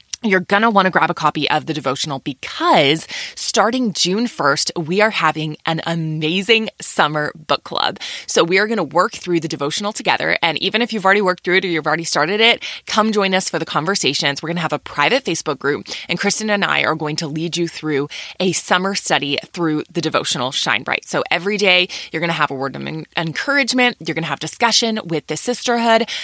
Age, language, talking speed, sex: 20-39, English, 220 wpm, female